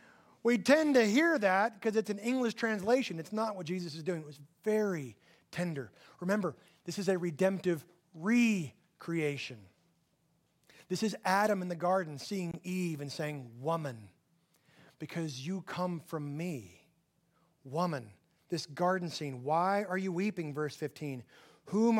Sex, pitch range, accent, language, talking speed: male, 160-215 Hz, American, English, 145 wpm